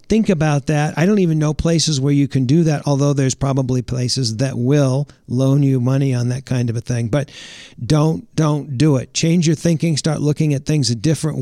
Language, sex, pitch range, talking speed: English, male, 130-160 Hz, 220 wpm